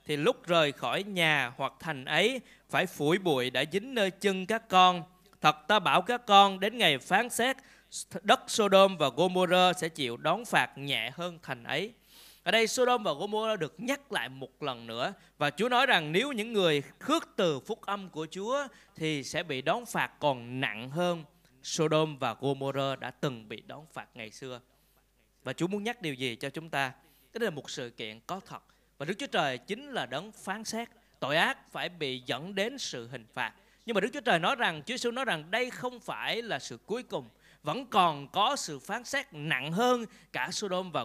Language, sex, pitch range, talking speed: Vietnamese, male, 150-220 Hz, 210 wpm